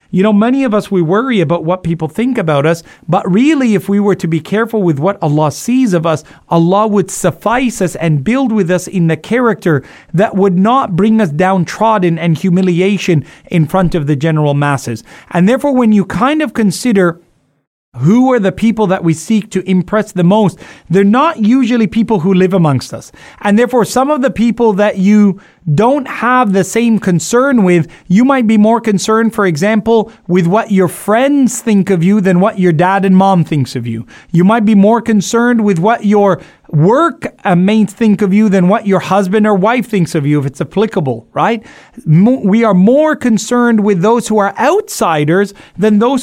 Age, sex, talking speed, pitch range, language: 30-49, male, 200 wpm, 170-220 Hz, English